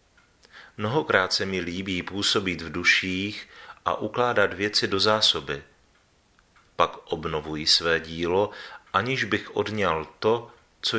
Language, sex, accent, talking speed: Czech, male, native, 115 wpm